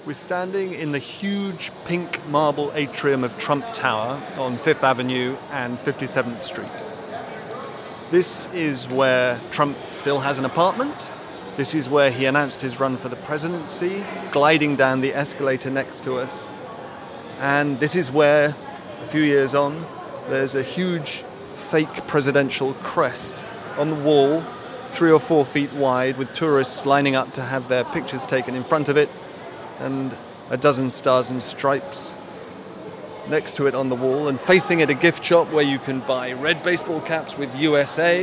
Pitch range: 135-155 Hz